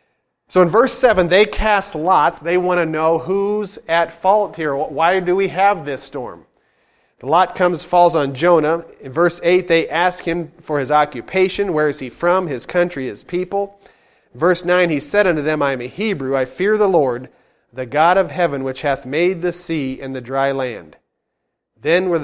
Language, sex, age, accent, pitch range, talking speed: English, male, 40-59, American, 140-180 Hz, 195 wpm